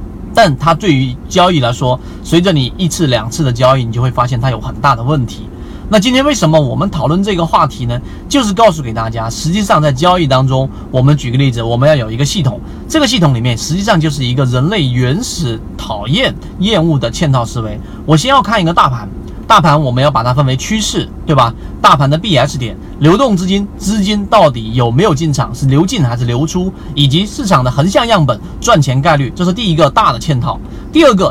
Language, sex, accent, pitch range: Chinese, male, native, 125-170 Hz